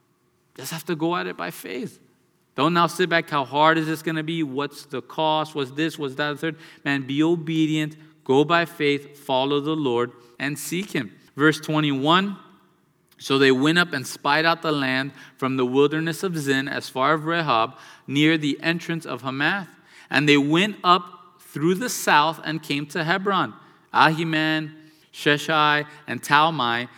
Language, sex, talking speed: English, male, 175 wpm